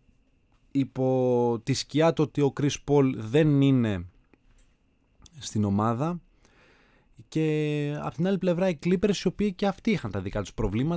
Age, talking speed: 20-39, 105 wpm